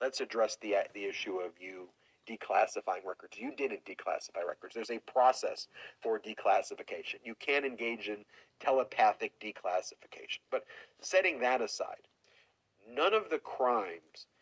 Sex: male